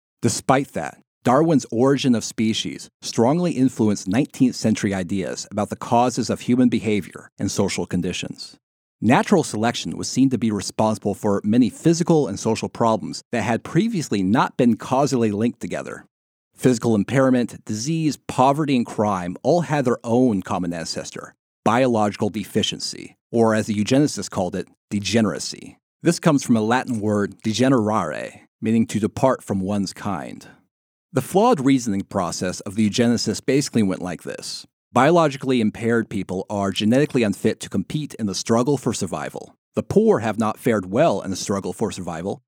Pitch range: 100-130 Hz